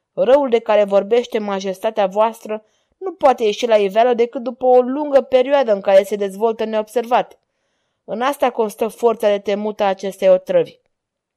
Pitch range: 200-255 Hz